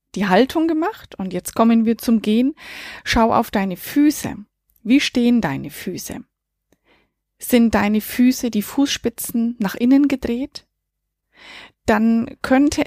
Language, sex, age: German, female, 20-39